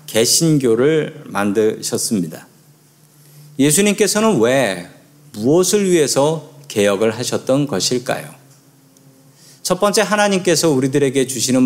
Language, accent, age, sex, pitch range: Korean, native, 40-59, male, 125-160 Hz